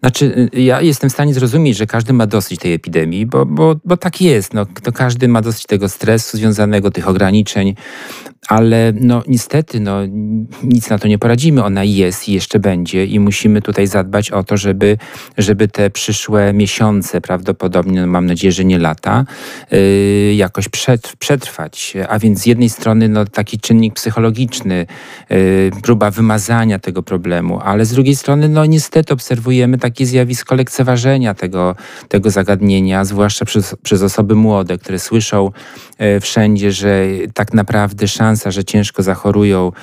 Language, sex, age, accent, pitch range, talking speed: Polish, male, 40-59, native, 100-120 Hz, 160 wpm